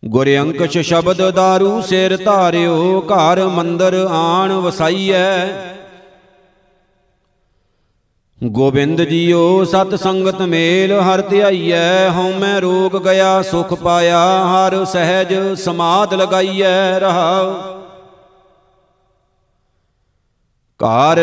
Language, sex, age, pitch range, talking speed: Punjabi, male, 50-69, 170-190 Hz, 80 wpm